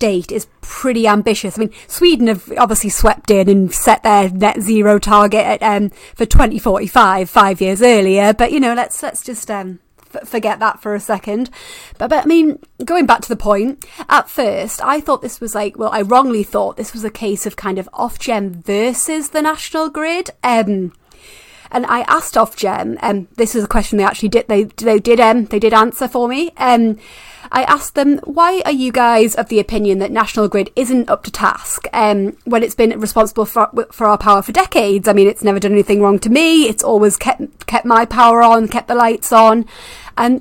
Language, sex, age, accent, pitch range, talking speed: English, female, 30-49, British, 210-255 Hz, 210 wpm